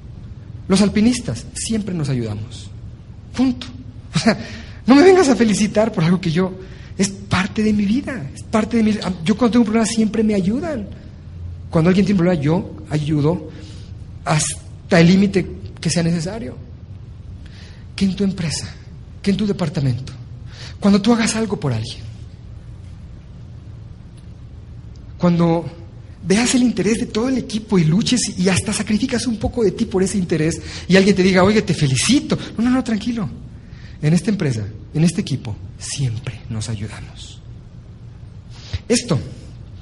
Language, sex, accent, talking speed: Spanish, male, Mexican, 150 wpm